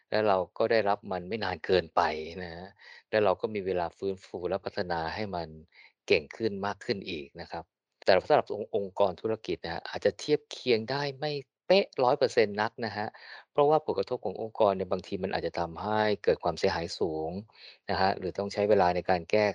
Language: Thai